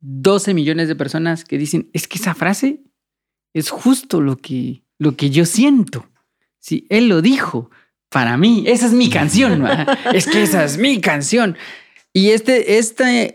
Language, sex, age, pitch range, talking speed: Spanish, male, 30-49, 145-205 Hz, 175 wpm